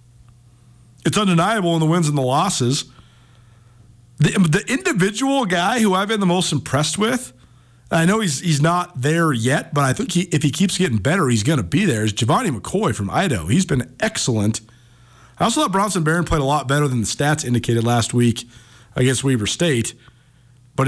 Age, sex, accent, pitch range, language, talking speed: 40-59, male, American, 120-160 Hz, English, 195 wpm